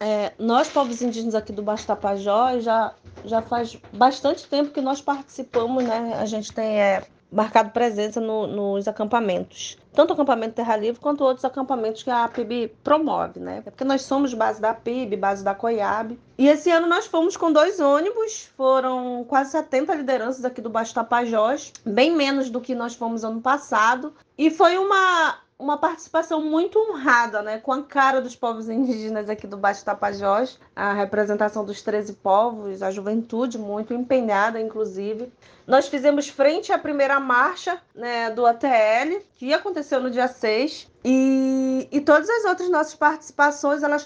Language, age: Portuguese, 20-39